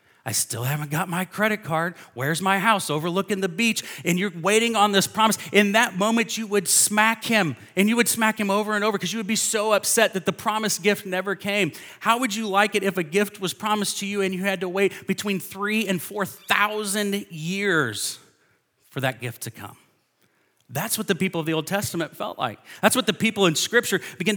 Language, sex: English, male